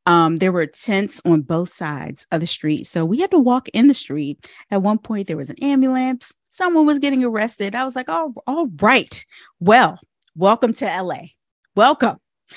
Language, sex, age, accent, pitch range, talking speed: English, female, 30-49, American, 170-230 Hz, 190 wpm